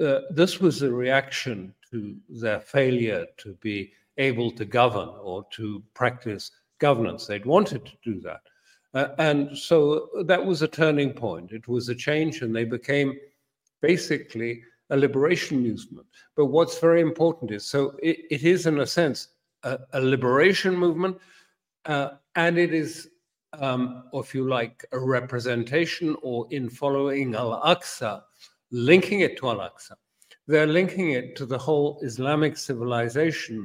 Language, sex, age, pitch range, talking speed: English, male, 50-69, 120-150 Hz, 150 wpm